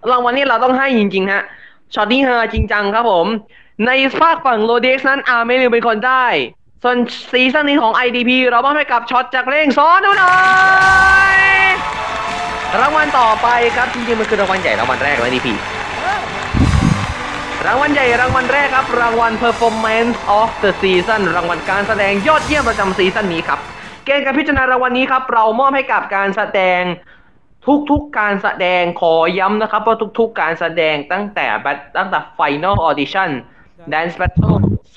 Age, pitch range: 20-39, 190-260 Hz